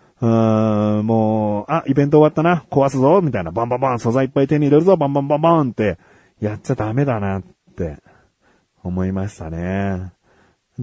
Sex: male